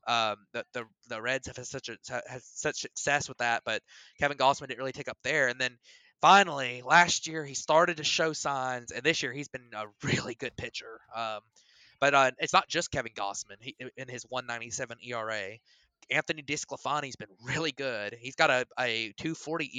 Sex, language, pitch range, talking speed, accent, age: male, English, 125-150 Hz, 190 wpm, American, 20-39